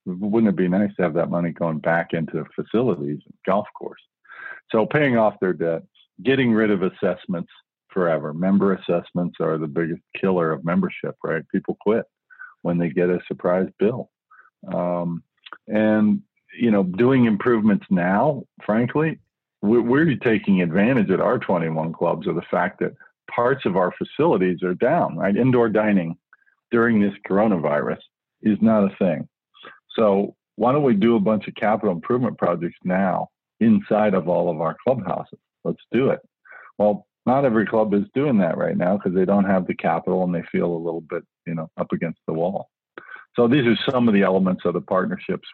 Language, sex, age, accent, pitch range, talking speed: English, male, 50-69, American, 85-110 Hz, 180 wpm